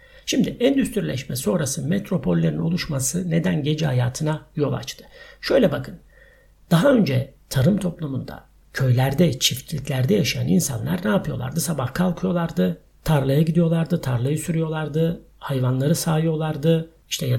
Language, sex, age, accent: Turkish, male, 60-79, native